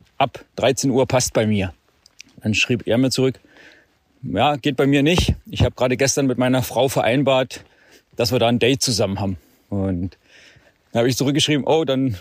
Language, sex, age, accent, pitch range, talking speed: German, male, 40-59, German, 115-145 Hz, 185 wpm